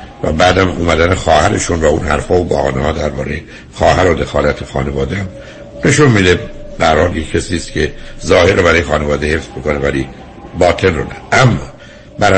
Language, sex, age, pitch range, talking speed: Persian, male, 60-79, 75-95 Hz, 160 wpm